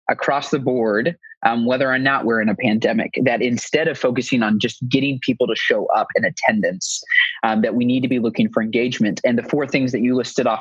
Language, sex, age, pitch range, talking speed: English, male, 20-39, 115-140 Hz, 230 wpm